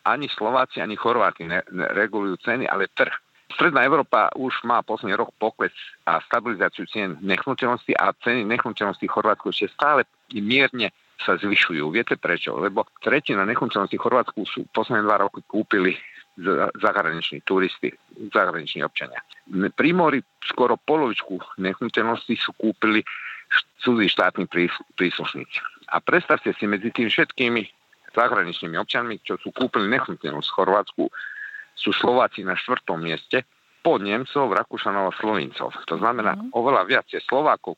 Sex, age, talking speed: male, 50-69, 135 wpm